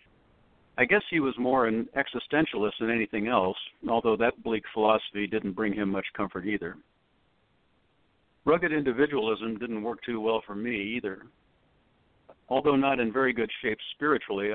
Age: 60-79